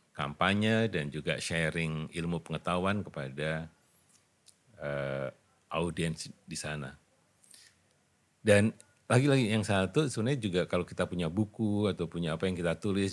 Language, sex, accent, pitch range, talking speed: Indonesian, male, native, 80-105 Hz, 125 wpm